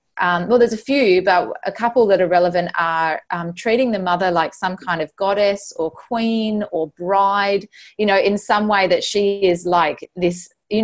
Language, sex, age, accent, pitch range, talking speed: English, female, 20-39, Australian, 175-225 Hz, 200 wpm